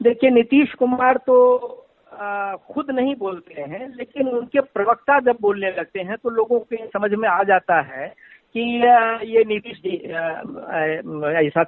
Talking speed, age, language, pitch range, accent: 150 wpm, 50-69, Hindi, 190-245 Hz, native